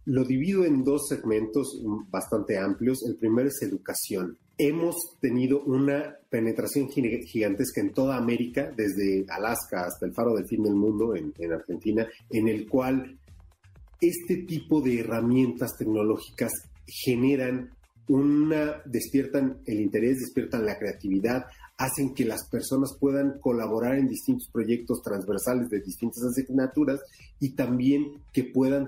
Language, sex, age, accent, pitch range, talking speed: Spanish, male, 40-59, Mexican, 110-140 Hz, 135 wpm